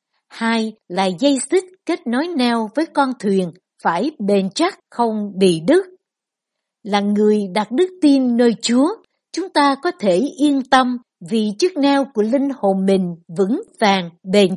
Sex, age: female, 60-79